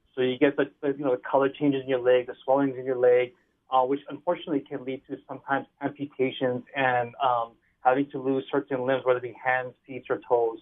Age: 30-49